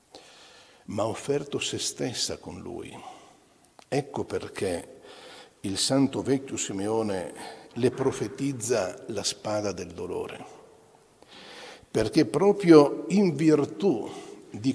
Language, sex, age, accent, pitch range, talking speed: Italian, male, 60-79, native, 120-165 Hz, 100 wpm